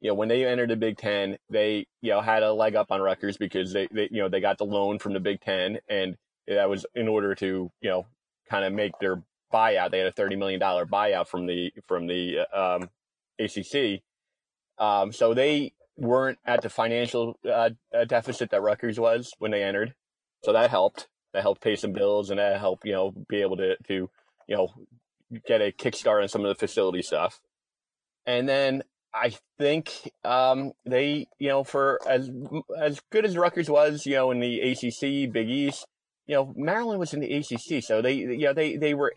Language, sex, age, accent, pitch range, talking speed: English, male, 30-49, American, 100-130 Hz, 205 wpm